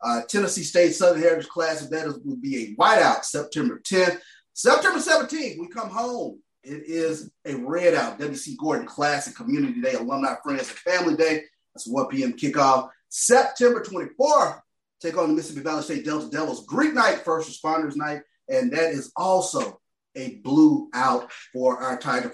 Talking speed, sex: 165 wpm, male